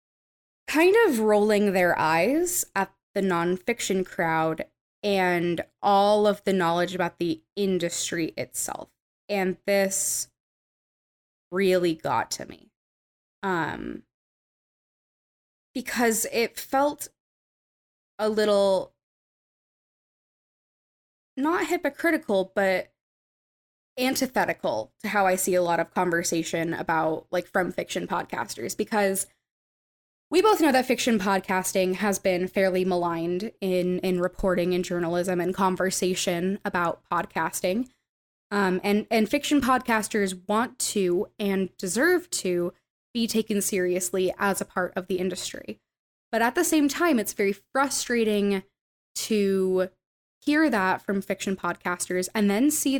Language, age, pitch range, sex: English, 20-39, 185-230 Hz, female